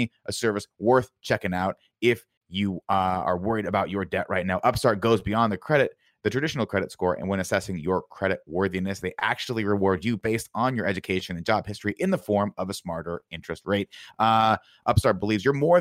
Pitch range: 90-110 Hz